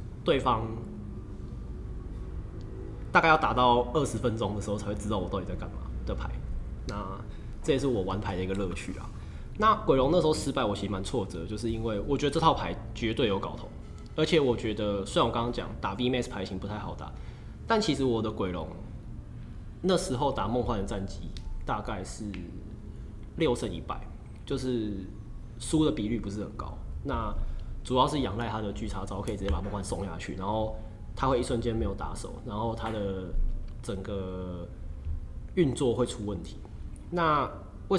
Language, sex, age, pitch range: Chinese, male, 20-39, 95-115 Hz